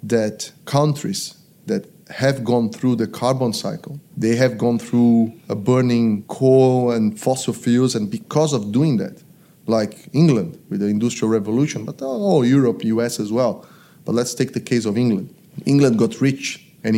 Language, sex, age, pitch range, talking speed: English, male, 30-49, 115-155 Hz, 165 wpm